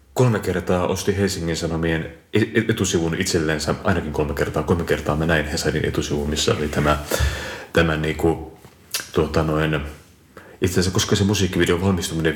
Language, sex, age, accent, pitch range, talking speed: Finnish, male, 30-49, native, 75-90 Hz, 145 wpm